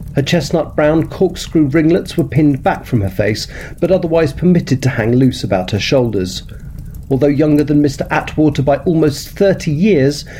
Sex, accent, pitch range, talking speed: male, British, 125-165 Hz, 165 wpm